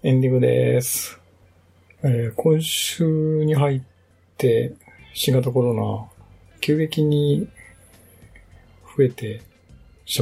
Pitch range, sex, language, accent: 100-120 Hz, male, Japanese, native